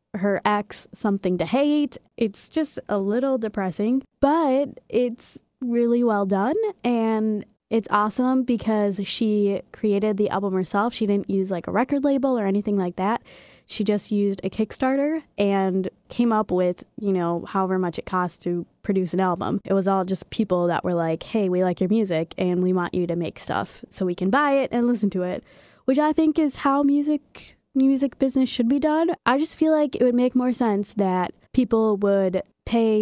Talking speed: 195 wpm